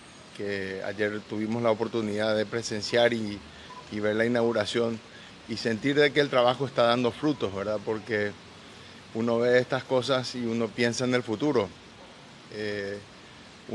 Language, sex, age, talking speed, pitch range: Spanish, male, 30-49, 150 wpm, 110-125 Hz